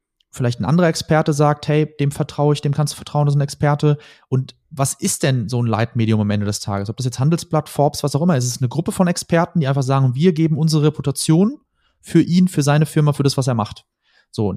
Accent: German